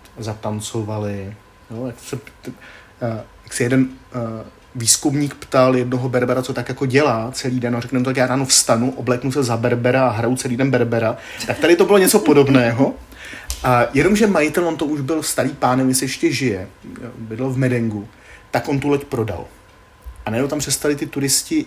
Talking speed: 185 wpm